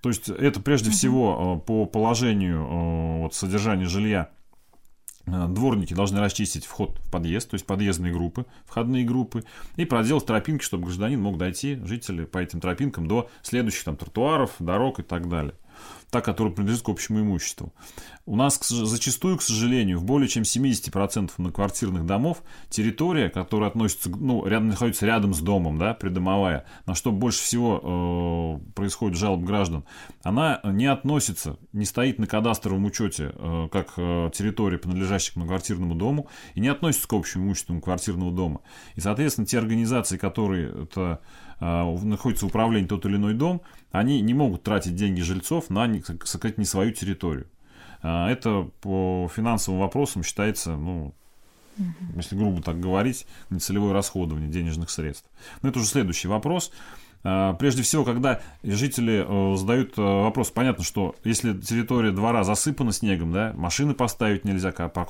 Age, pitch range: 30-49, 90-115 Hz